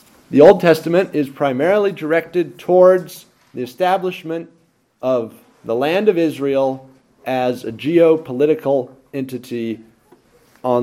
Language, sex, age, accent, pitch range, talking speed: English, male, 40-59, American, 130-165 Hz, 105 wpm